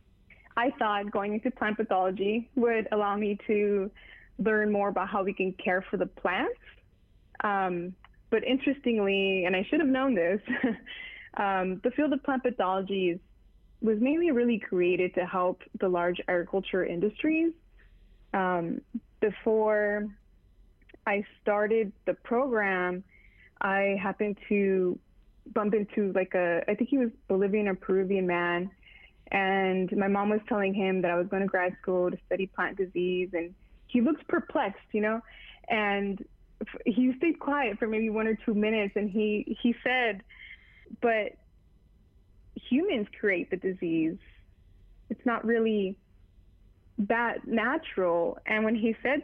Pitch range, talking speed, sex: 185-235 Hz, 145 wpm, female